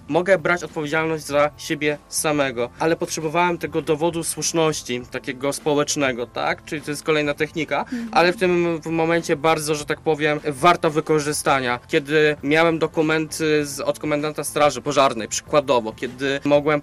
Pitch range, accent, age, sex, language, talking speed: 150-165 Hz, native, 20-39, male, Polish, 145 wpm